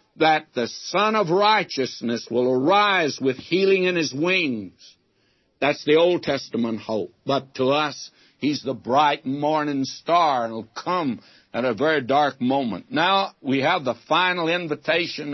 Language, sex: English, male